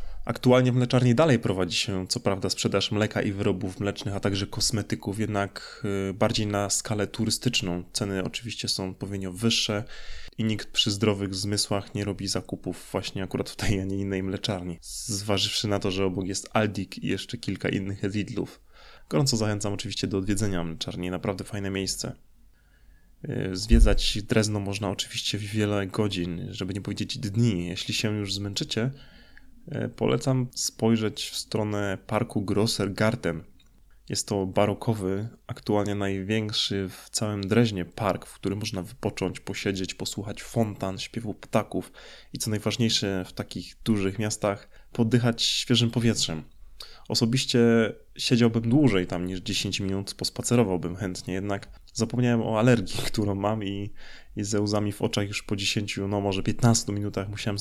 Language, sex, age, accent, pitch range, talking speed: Polish, male, 20-39, native, 95-115 Hz, 145 wpm